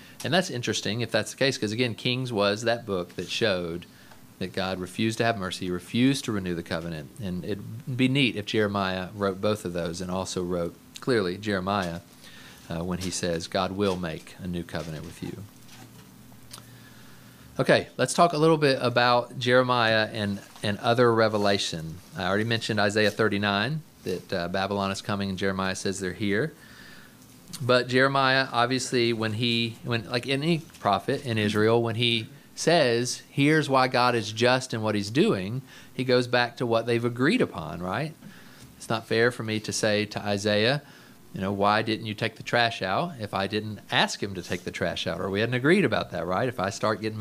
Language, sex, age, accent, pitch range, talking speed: English, male, 40-59, American, 95-125 Hz, 190 wpm